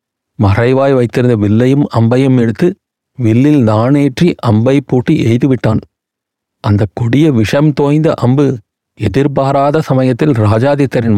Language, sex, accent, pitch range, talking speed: Tamil, male, native, 115-140 Hz, 95 wpm